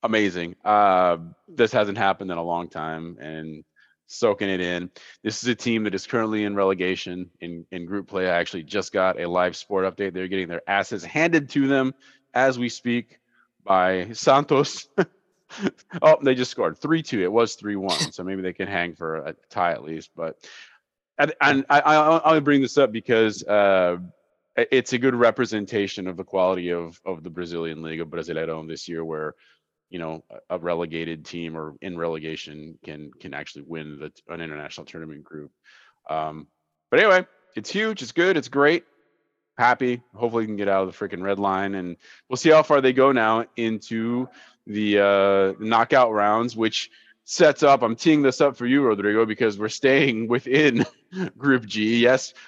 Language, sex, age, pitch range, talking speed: English, male, 30-49, 85-125 Hz, 180 wpm